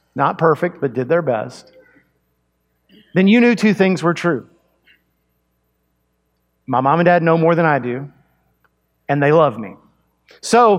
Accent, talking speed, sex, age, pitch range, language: American, 150 wpm, male, 50-69, 140-195 Hz, English